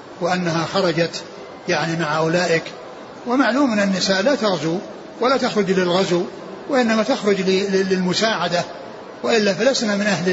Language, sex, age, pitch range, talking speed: Arabic, male, 60-79, 175-205 Hz, 115 wpm